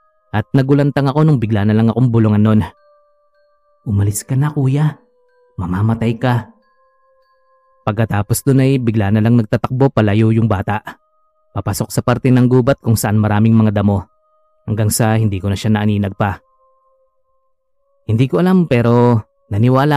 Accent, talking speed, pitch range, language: native, 145 wpm, 110-175 Hz, Filipino